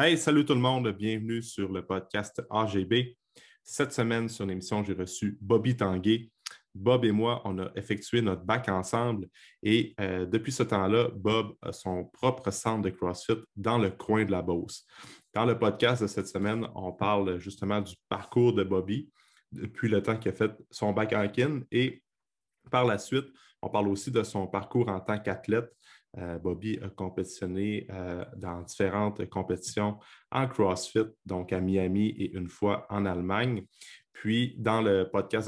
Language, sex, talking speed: French, male, 170 wpm